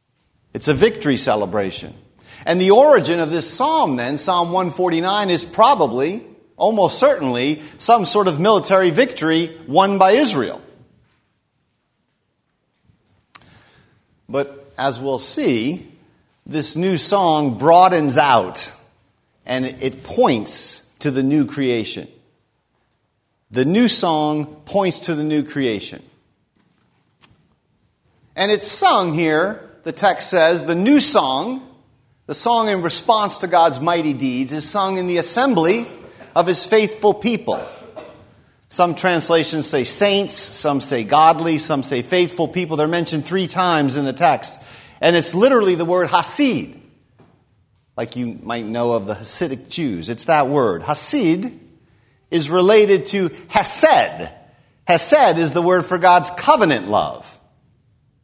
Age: 40-59